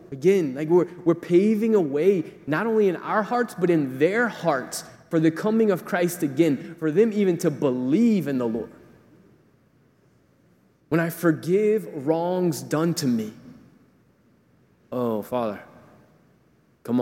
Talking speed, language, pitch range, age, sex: 140 wpm, English, 125-165 Hz, 20-39, male